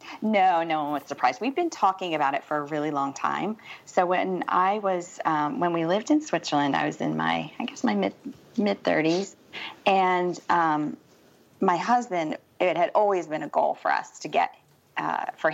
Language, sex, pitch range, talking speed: English, female, 155-195 Hz, 195 wpm